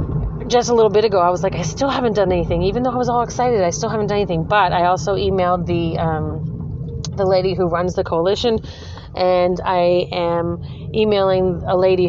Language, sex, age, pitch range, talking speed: English, female, 30-49, 165-195 Hz, 210 wpm